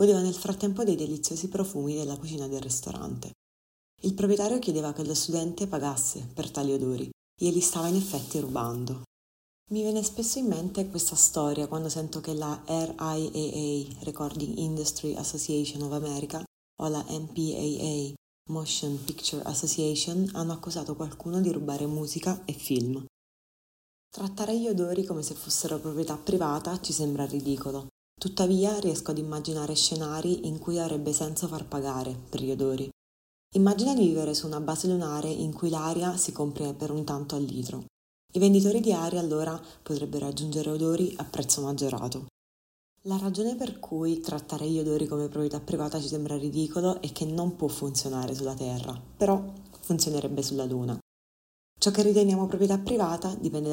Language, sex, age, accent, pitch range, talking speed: Italian, female, 30-49, native, 145-175 Hz, 155 wpm